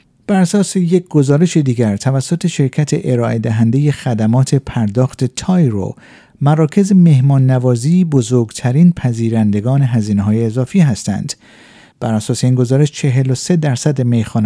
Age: 50-69